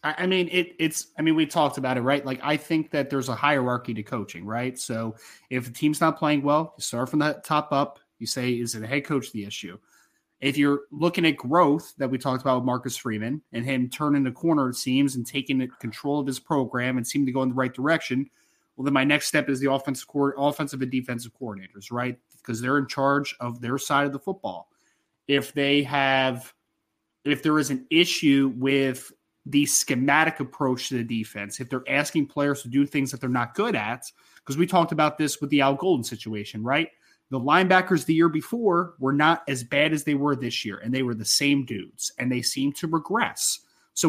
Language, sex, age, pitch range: English, male, 30-49, 125-150 Hz